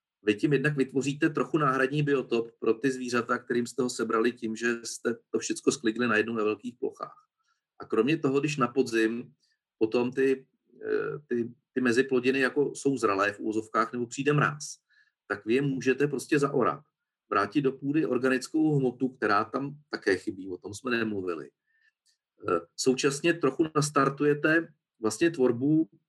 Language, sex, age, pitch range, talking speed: Czech, male, 40-59, 120-155 Hz, 155 wpm